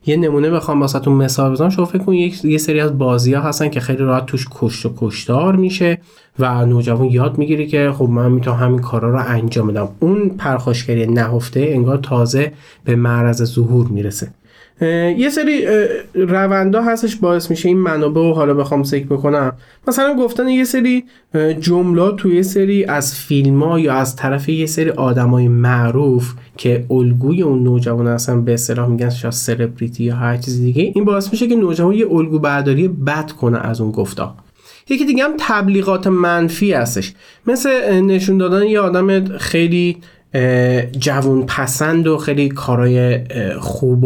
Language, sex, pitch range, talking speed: Persian, male, 125-175 Hz, 160 wpm